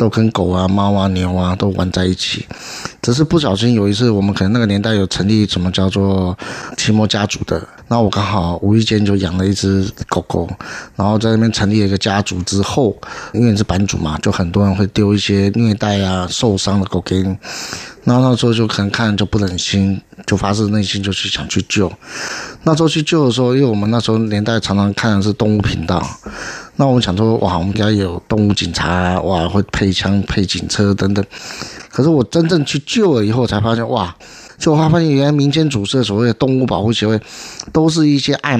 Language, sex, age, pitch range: Chinese, male, 20-39, 95-120 Hz